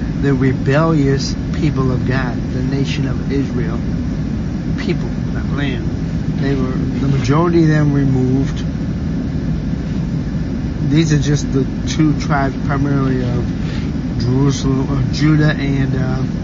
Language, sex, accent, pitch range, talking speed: English, male, American, 130-145 Hz, 115 wpm